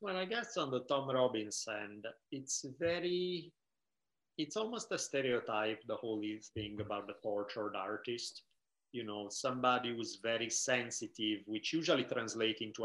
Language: English